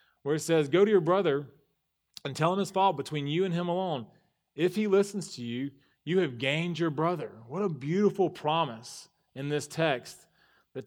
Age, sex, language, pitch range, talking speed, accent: 30-49, male, English, 120-150 Hz, 195 wpm, American